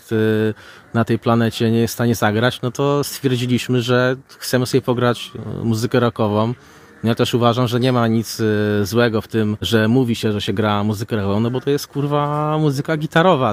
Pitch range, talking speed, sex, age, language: 110-130 Hz, 185 wpm, male, 20-39, Polish